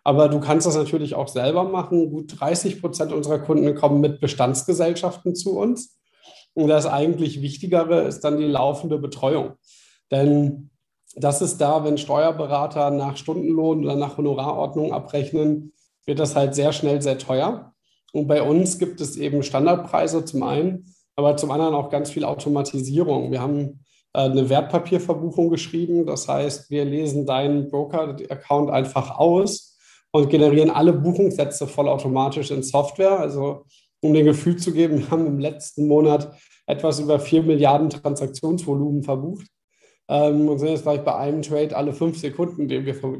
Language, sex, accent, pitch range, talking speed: German, male, German, 140-160 Hz, 155 wpm